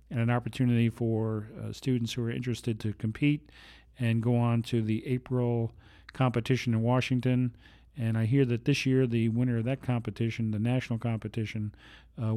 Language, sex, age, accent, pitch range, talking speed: English, male, 40-59, American, 115-130 Hz, 170 wpm